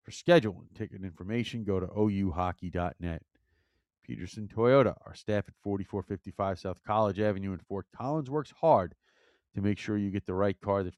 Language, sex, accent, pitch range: English, male, American, 95-115 Hz